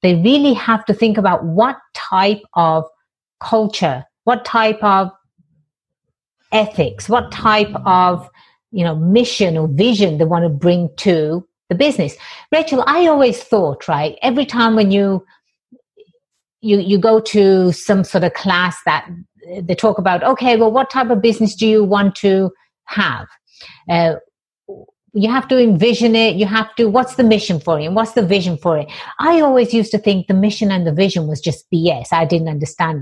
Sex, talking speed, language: female, 175 wpm, English